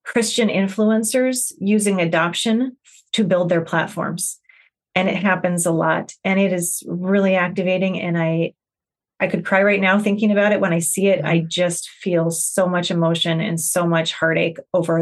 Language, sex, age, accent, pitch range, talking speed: English, female, 30-49, American, 175-210 Hz, 170 wpm